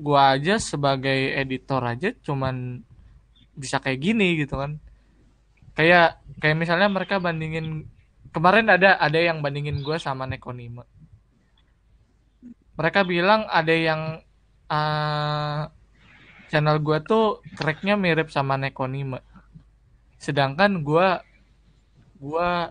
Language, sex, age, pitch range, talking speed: Indonesian, male, 20-39, 140-175 Hz, 105 wpm